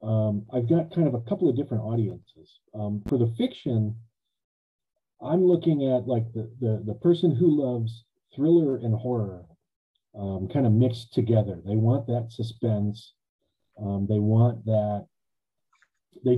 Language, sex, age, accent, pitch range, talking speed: English, male, 40-59, American, 105-125 Hz, 150 wpm